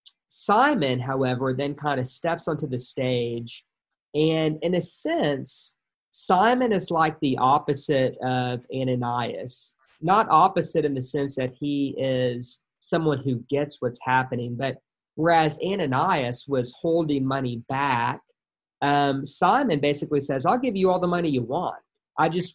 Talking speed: 145 wpm